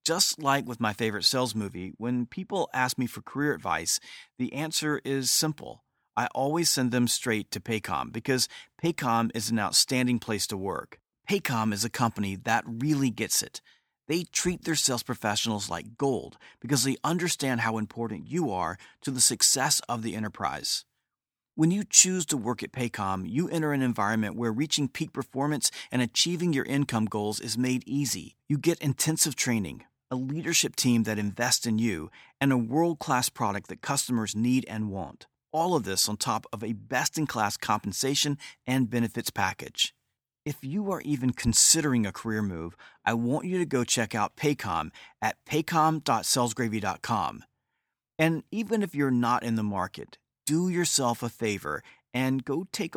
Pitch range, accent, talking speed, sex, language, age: 110-145 Hz, American, 170 wpm, male, English, 40-59